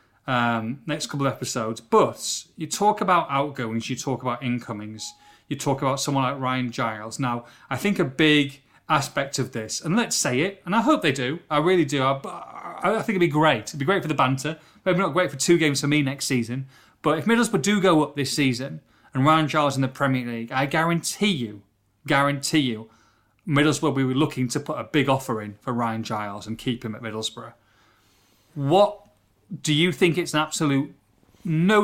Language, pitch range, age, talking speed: English, 125-160 Hz, 30-49, 205 wpm